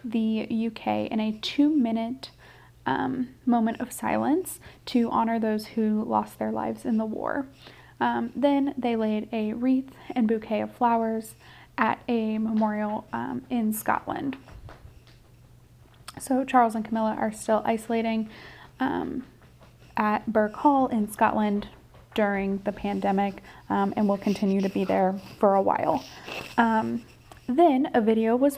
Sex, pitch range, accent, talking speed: female, 205-245 Hz, American, 135 wpm